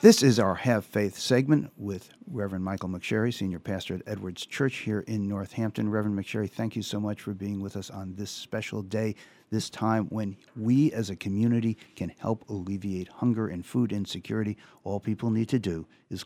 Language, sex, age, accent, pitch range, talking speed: English, male, 50-69, American, 95-120 Hz, 190 wpm